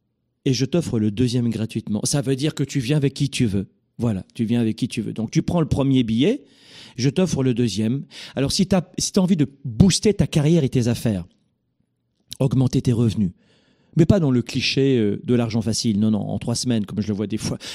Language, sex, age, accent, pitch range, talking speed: French, male, 40-59, French, 115-160 Hz, 235 wpm